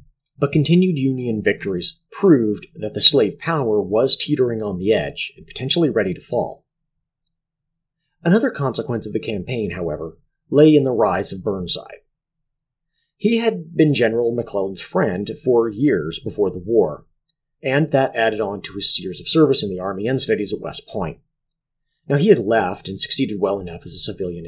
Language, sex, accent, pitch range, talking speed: English, male, American, 110-155 Hz, 170 wpm